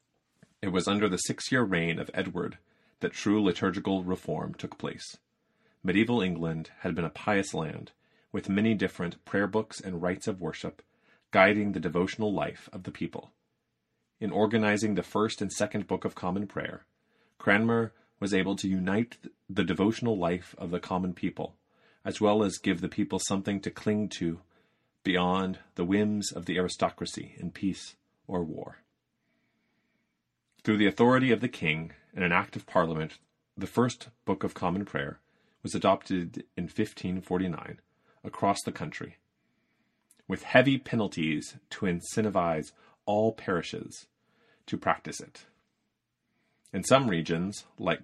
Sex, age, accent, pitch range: male, 30-49, American, 90-110 Hz